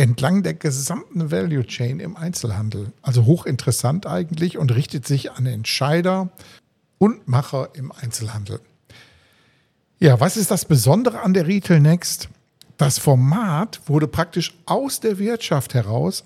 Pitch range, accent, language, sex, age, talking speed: 125-170 Hz, German, German, male, 50-69, 135 wpm